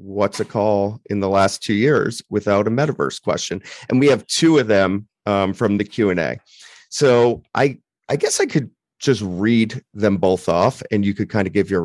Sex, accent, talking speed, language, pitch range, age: male, American, 215 wpm, English, 100-125 Hz, 40-59